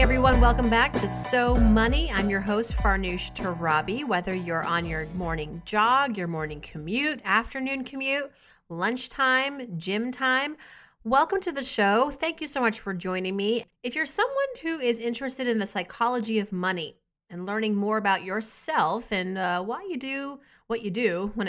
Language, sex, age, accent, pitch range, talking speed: English, female, 30-49, American, 185-245 Hz, 175 wpm